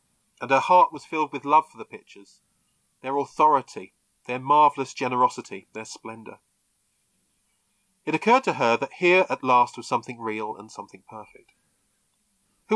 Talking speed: 150 wpm